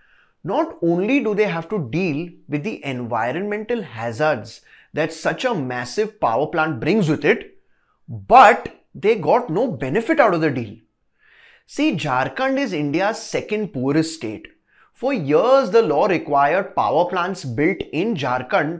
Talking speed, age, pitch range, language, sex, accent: 145 wpm, 20-39, 155-230 Hz, English, male, Indian